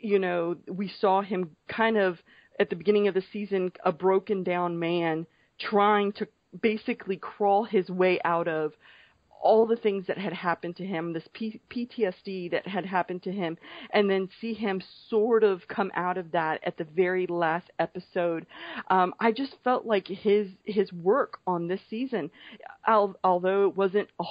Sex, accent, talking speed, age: female, American, 175 wpm, 40-59